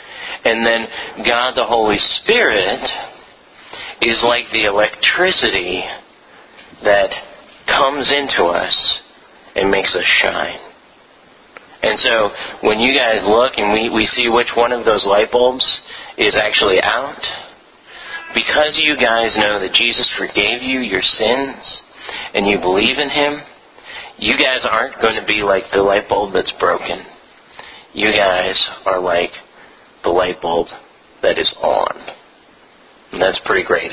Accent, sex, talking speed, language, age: American, male, 135 wpm, English, 40-59